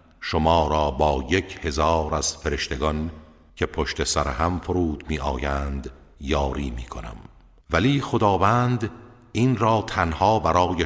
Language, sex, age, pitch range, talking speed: Persian, male, 50-69, 70-85 Hz, 110 wpm